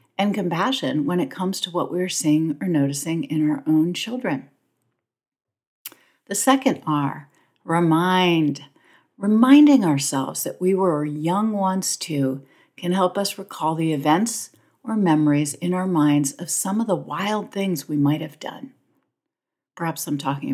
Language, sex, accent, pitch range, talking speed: English, female, American, 150-205 Hz, 150 wpm